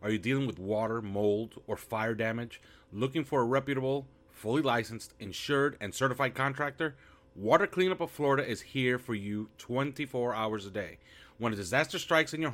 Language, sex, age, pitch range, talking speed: English, male, 30-49, 110-150 Hz, 175 wpm